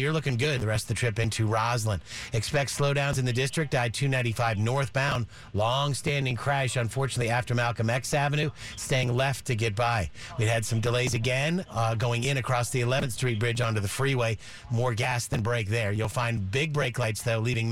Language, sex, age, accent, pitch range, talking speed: English, male, 50-69, American, 115-135 Hz, 195 wpm